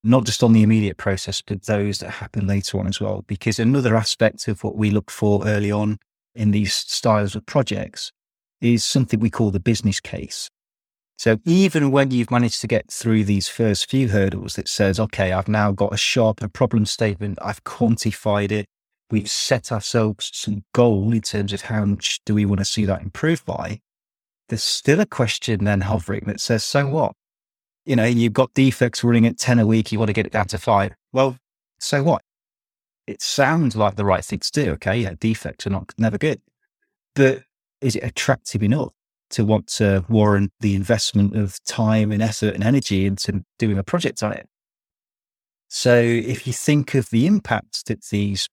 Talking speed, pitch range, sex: 195 wpm, 100-120 Hz, male